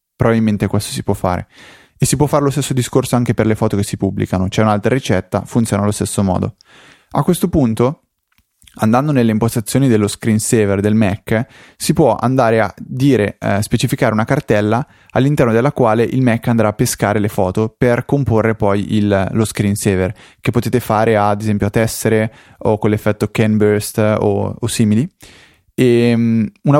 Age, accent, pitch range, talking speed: 20-39, native, 105-125 Hz, 170 wpm